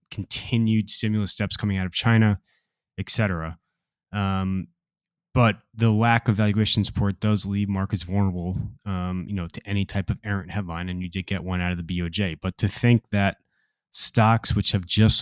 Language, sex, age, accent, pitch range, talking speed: English, male, 20-39, American, 95-110 Hz, 180 wpm